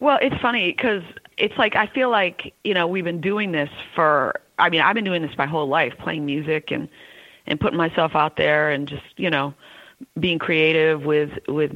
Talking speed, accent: 210 wpm, American